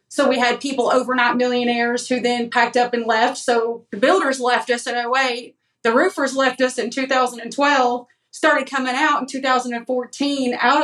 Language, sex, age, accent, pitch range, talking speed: English, female, 30-49, American, 235-265 Hz, 170 wpm